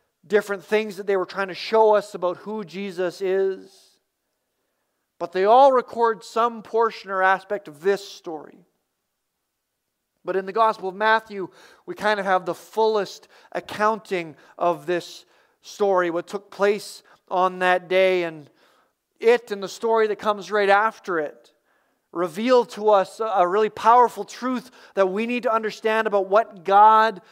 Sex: male